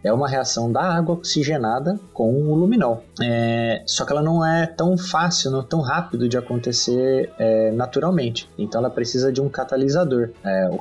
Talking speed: 160 wpm